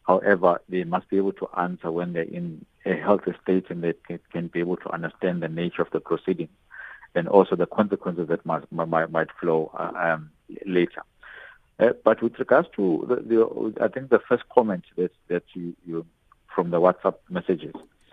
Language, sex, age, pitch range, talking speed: English, male, 50-69, 85-110 Hz, 160 wpm